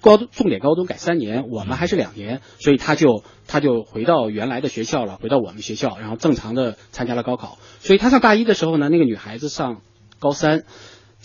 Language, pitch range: Chinese, 125-205 Hz